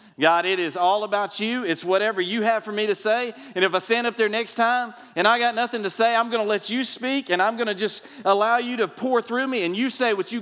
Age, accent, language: 40-59, American, English